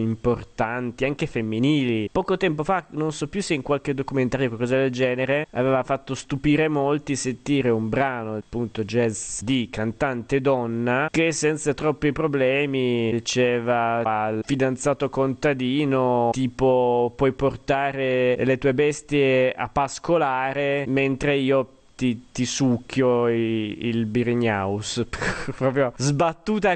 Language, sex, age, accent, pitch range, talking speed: Italian, male, 20-39, native, 120-150 Hz, 120 wpm